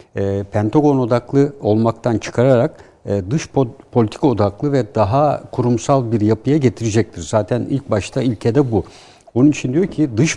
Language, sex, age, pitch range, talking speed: Turkish, male, 60-79, 105-135 Hz, 140 wpm